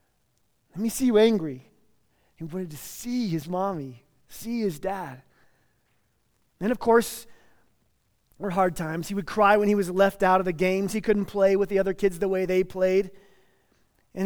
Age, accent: 30-49, American